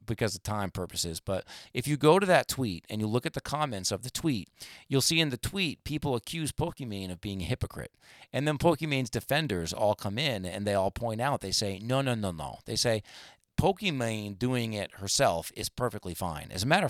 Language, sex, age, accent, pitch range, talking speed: English, male, 40-59, American, 95-125 Hz, 220 wpm